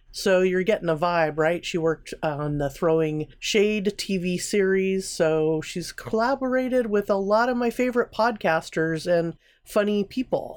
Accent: American